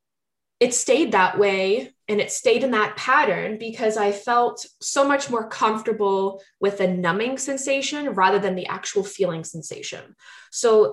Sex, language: female, English